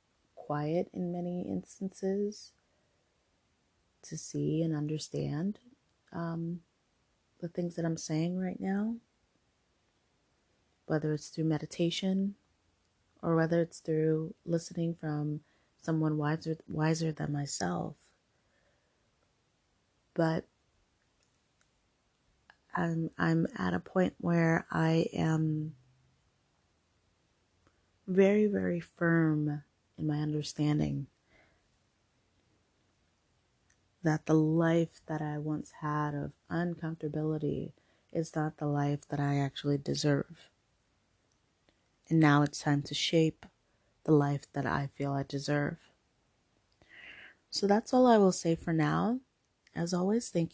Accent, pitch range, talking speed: American, 140-170 Hz, 105 wpm